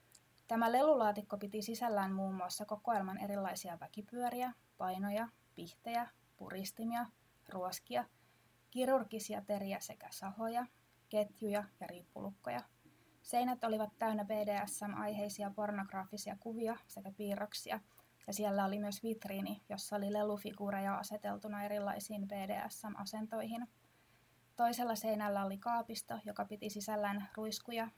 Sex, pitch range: female, 195-220 Hz